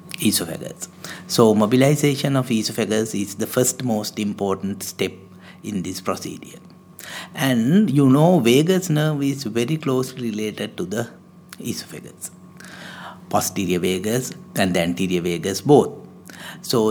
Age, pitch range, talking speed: 60-79, 110-150 Hz, 120 wpm